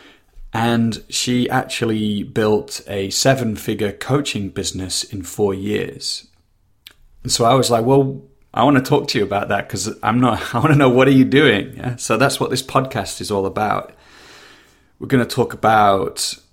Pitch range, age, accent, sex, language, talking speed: 100-120 Hz, 30-49, British, male, English, 185 wpm